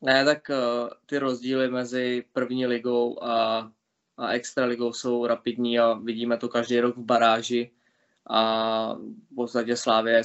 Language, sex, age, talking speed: Czech, male, 20-39, 140 wpm